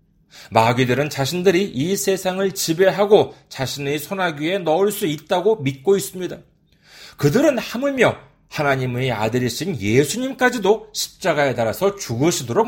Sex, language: male, Korean